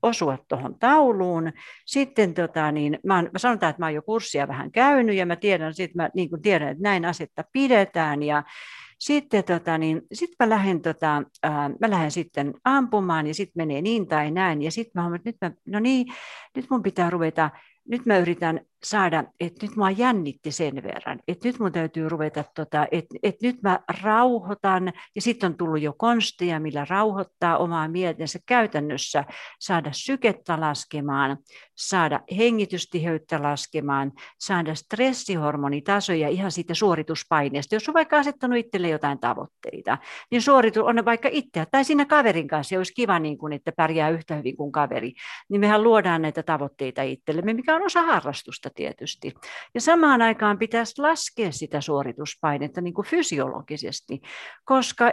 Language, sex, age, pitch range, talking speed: Finnish, female, 60-79, 155-225 Hz, 160 wpm